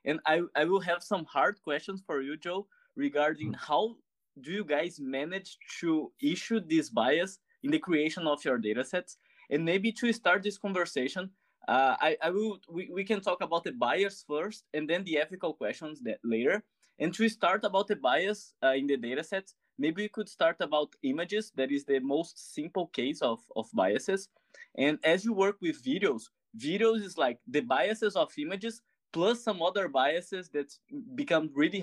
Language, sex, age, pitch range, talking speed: English, male, 20-39, 150-220 Hz, 185 wpm